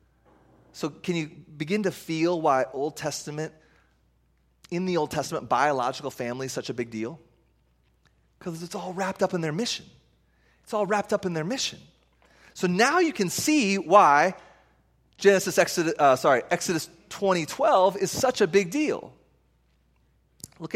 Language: English